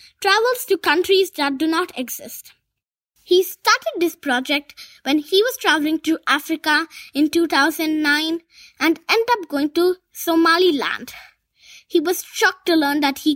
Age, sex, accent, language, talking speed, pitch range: 20-39, female, Indian, English, 145 wpm, 285-360 Hz